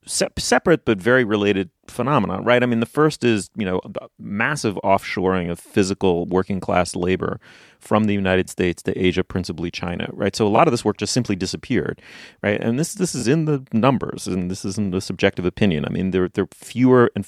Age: 30-49